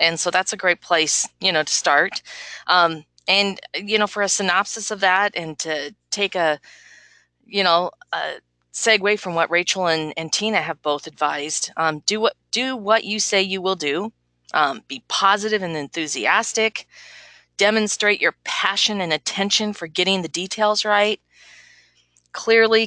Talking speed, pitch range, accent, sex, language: 165 wpm, 165-205 Hz, American, female, English